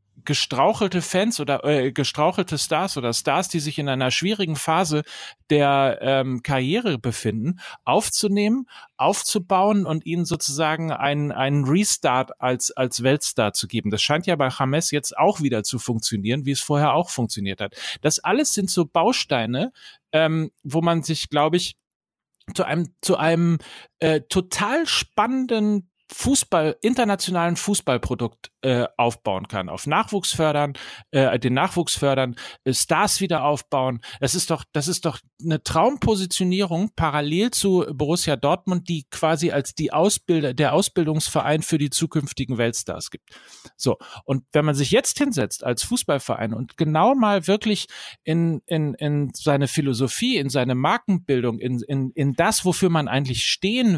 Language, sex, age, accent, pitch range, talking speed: German, male, 40-59, German, 135-180 Hz, 150 wpm